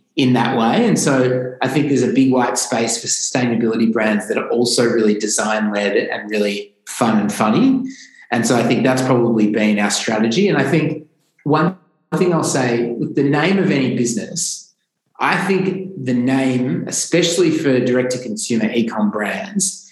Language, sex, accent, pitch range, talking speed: English, male, Australian, 115-150 Hz, 175 wpm